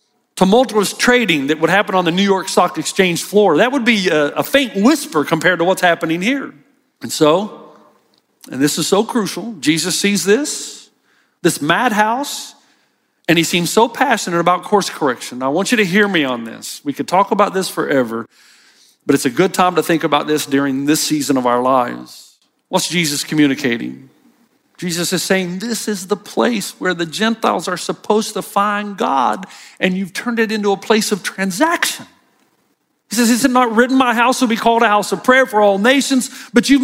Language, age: English, 50-69